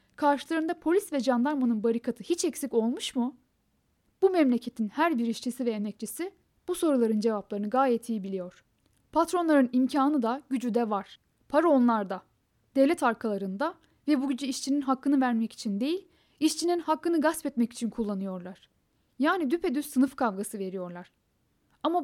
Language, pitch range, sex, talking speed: Turkish, 230-300 Hz, female, 140 wpm